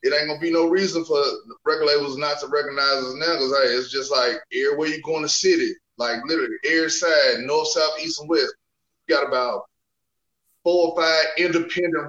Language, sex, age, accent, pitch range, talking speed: English, male, 20-39, American, 165-225 Hz, 210 wpm